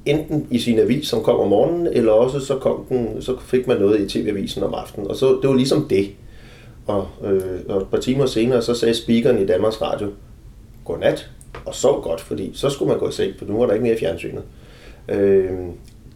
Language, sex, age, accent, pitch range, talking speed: Danish, male, 30-49, native, 100-135 Hz, 225 wpm